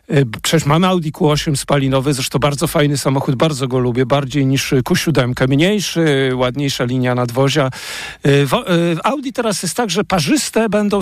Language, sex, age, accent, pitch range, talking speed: Polish, male, 50-69, native, 150-205 Hz, 145 wpm